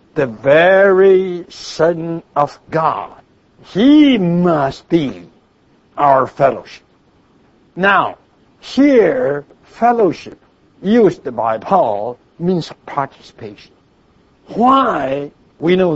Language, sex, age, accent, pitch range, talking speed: English, male, 60-79, American, 135-195 Hz, 80 wpm